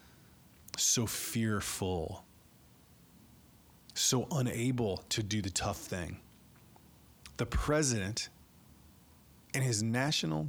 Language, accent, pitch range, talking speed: English, American, 100-135 Hz, 80 wpm